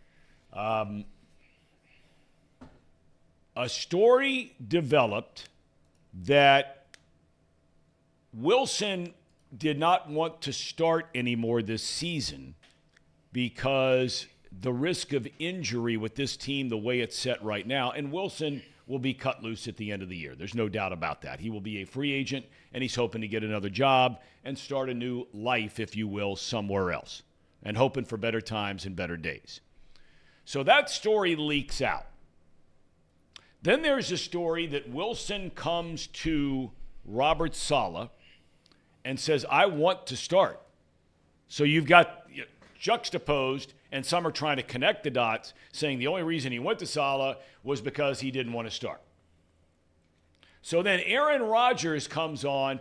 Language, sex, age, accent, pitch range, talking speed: English, male, 50-69, American, 95-145 Hz, 150 wpm